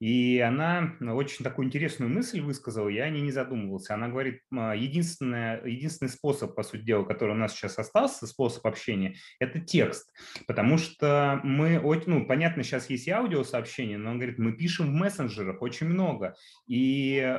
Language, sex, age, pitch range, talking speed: Russian, male, 30-49, 115-155 Hz, 160 wpm